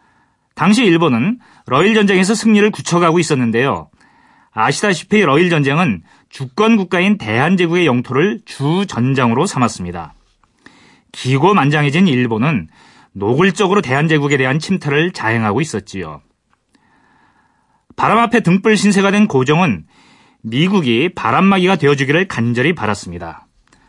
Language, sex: Korean, male